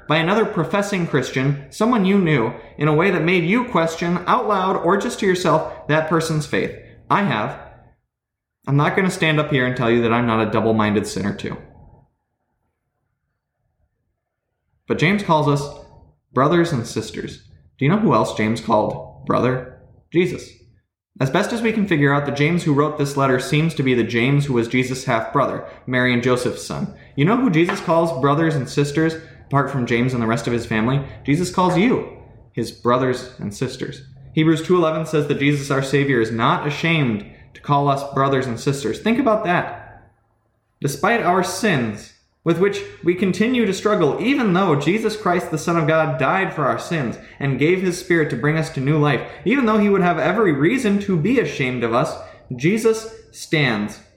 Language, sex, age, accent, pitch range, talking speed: English, male, 20-39, American, 120-175 Hz, 190 wpm